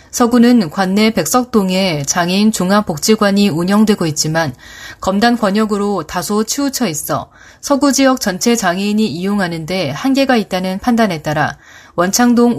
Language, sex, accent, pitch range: Korean, female, native, 180-235 Hz